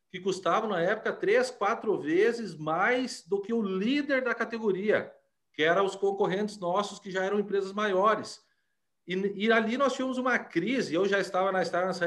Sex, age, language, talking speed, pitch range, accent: male, 40-59, Portuguese, 175 wpm, 175-220 Hz, Brazilian